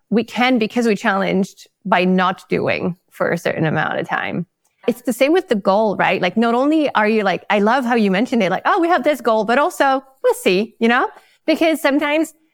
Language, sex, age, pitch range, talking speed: English, female, 20-39, 185-250 Hz, 225 wpm